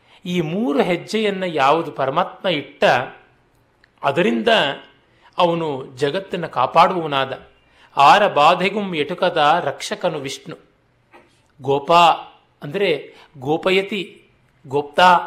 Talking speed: 75 wpm